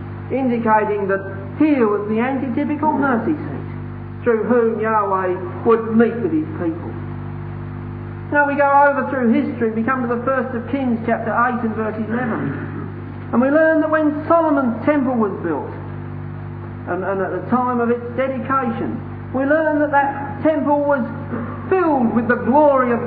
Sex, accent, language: male, British, English